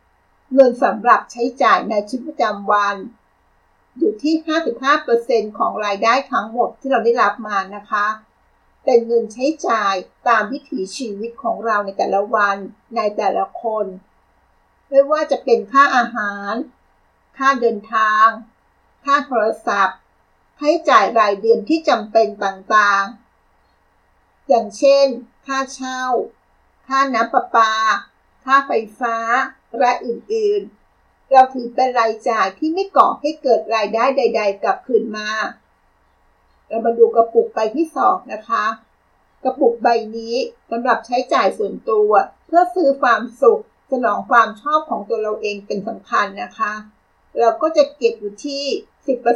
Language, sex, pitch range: Thai, female, 215-275 Hz